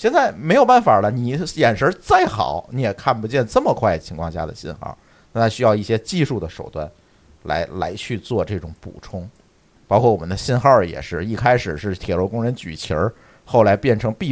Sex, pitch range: male, 95-145 Hz